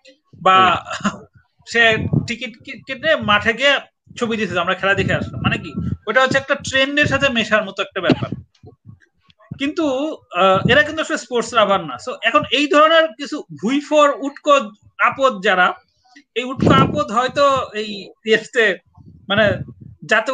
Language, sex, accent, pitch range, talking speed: Bengali, male, native, 215-275 Hz, 125 wpm